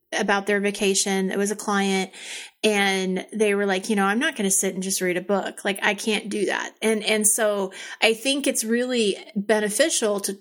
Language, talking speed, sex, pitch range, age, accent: English, 215 wpm, female, 195-235 Hz, 30-49, American